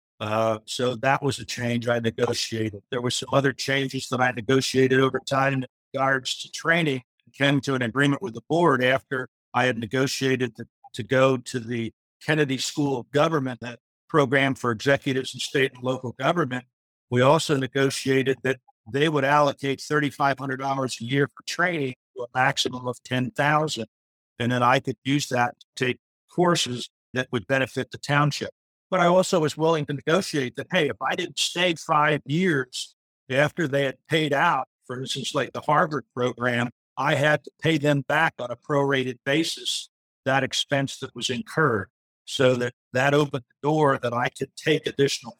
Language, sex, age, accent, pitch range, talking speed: English, male, 60-79, American, 125-145 Hz, 180 wpm